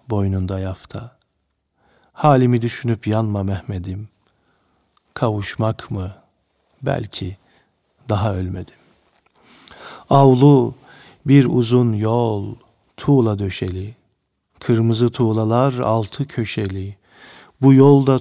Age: 50-69